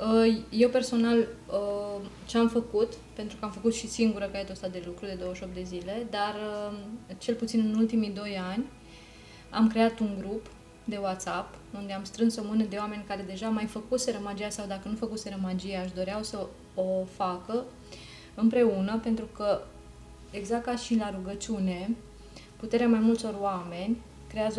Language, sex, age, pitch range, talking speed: Romanian, female, 20-39, 190-220 Hz, 160 wpm